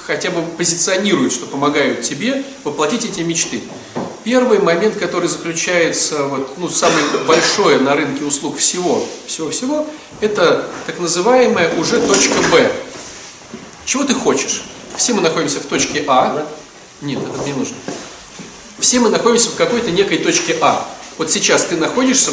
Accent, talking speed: native, 140 wpm